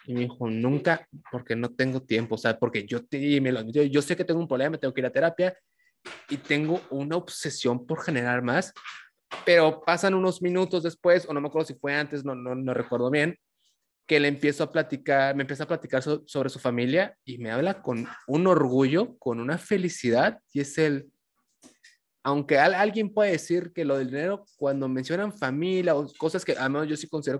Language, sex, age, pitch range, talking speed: Spanish, male, 20-39, 130-175 Hz, 210 wpm